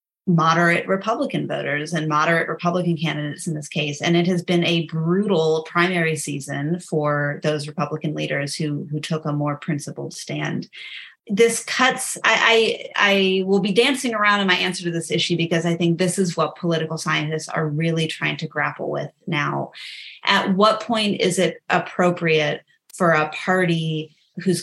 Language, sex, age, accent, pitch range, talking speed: English, female, 30-49, American, 155-185 Hz, 170 wpm